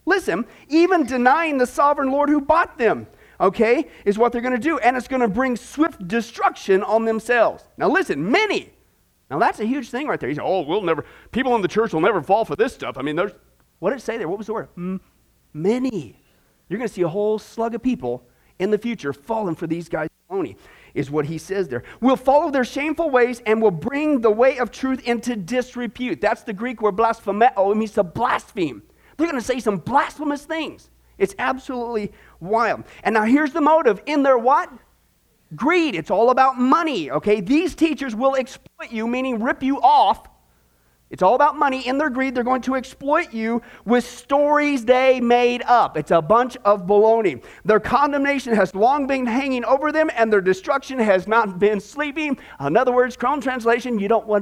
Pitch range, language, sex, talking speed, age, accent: 210-280 Hz, English, male, 200 wpm, 40-59, American